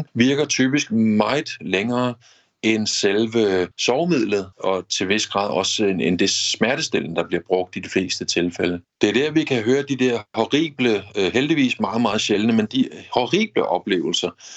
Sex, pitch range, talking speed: male, 105-135 Hz, 160 wpm